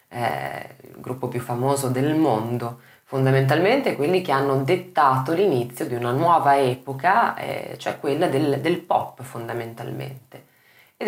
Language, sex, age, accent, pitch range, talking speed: Italian, female, 20-39, native, 125-160 Hz, 135 wpm